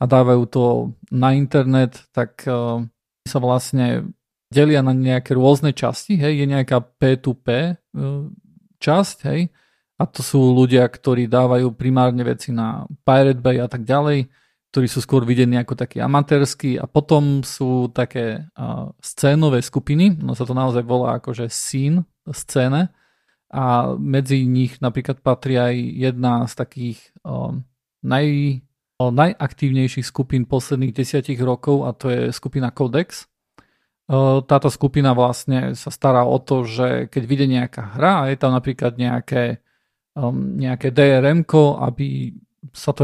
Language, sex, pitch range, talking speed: Slovak, male, 125-140 Hz, 140 wpm